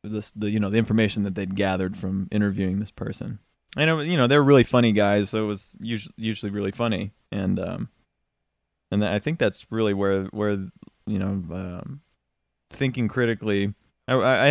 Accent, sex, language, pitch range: American, male, English, 95-110 Hz